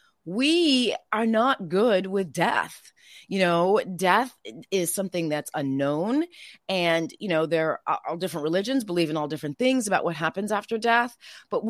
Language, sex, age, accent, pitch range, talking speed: English, female, 30-49, American, 155-215 Hz, 165 wpm